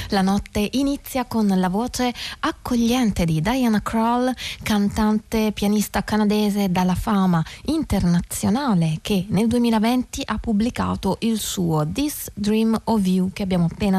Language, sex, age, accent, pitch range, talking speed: Italian, female, 20-39, native, 175-220 Hz, 130 wpm